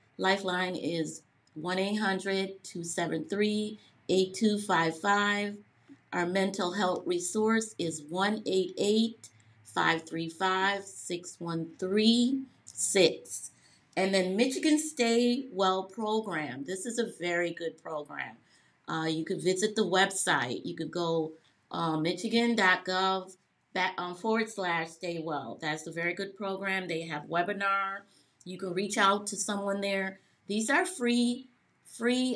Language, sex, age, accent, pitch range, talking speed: English, female, 30-49, American, 175-210 Hz, 110 wpm